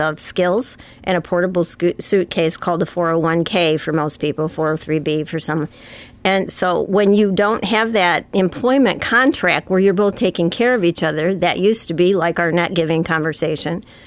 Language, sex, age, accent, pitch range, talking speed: English, female, 50-69, American, 170-205 Hz, 175 wpm